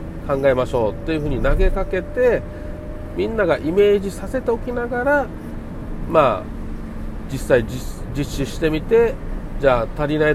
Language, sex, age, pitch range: Japanese, male, 40-59, 125-185 Hz